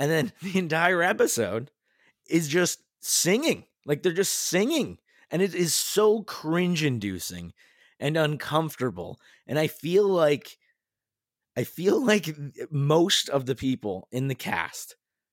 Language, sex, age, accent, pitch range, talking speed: English, male, 20-39, American, 115-160 Hz, 135 wpm